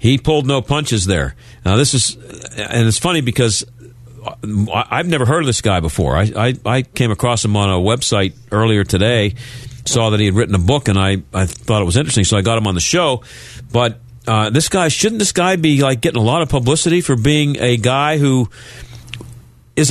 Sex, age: male, 50-69